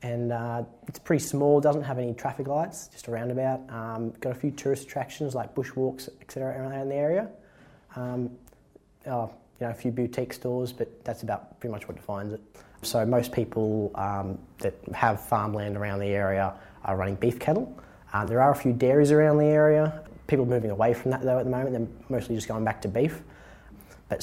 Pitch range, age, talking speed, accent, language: 100-130 Hz, 20-39, 205 wpm, Australian, English